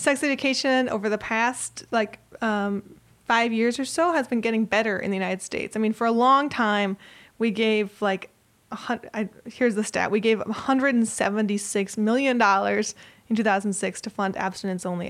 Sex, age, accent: female, 20-39, American